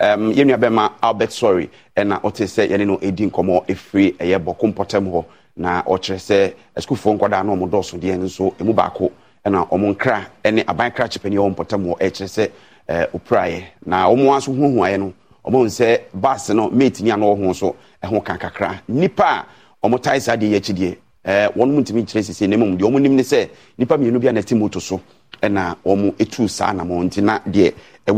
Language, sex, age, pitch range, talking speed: English, male, 30-49, 100-125 Hz, 170 wpm